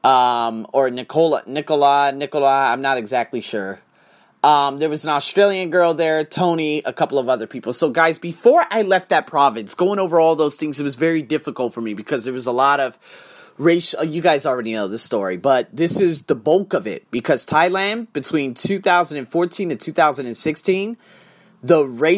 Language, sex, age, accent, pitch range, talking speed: English, male, 30-49, American, 140-185 Hz, 180 wpm